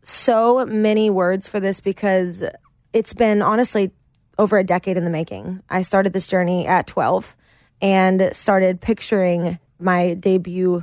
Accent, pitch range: American, 175-200 Hz